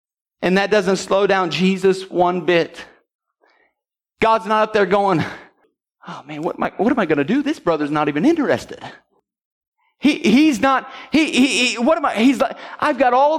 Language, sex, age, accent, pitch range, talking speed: English, male, 40-59, American, 250-335 Hz, 175 wpm